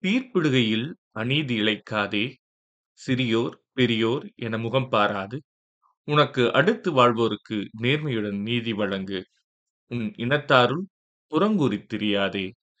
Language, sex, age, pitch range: Tamil, male, 30-49, 105-125 Hz